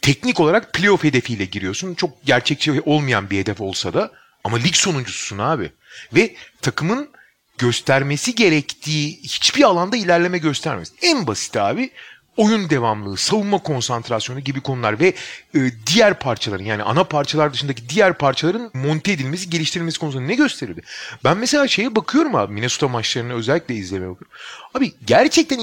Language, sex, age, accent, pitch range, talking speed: Turkish, male, 40-59, native, 125-210 Hz, 145 wpm